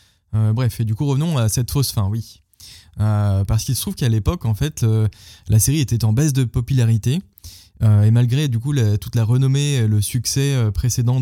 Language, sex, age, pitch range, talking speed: French, male, 20-39, 100-125 Hz, 225 wpm